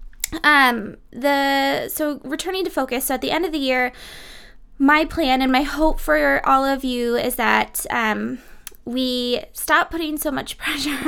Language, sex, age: English, female, 20-39